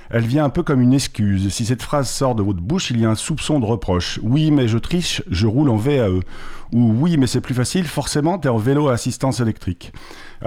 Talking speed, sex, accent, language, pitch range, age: 265 wpm, male, French, French, 105-140 Hz, 50-69